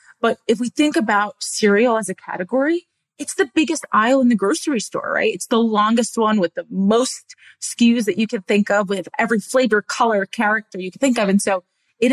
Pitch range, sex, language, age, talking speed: 190-240 Hz, female, English, 30-49, 215 wpm